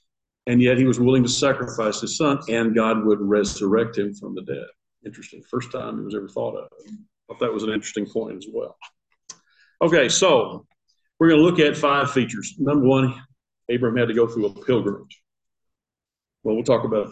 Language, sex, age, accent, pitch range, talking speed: English, male, 50-69, American, 120-160 Hz, 195 wpm